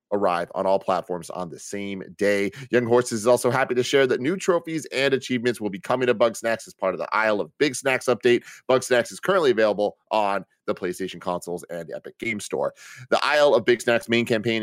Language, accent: English, American